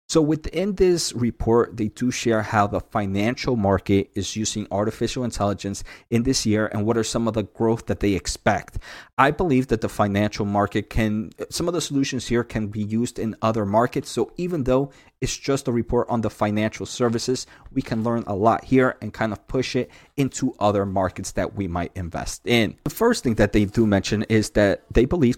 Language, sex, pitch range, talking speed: English, male, 105-125 Hz, 205 wpm